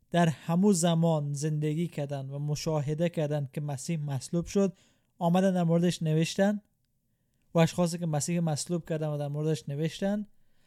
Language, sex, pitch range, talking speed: Persian, male, 125-170 Hz, 145 wpm